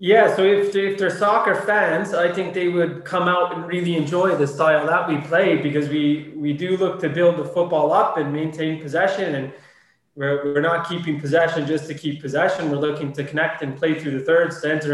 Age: 20-39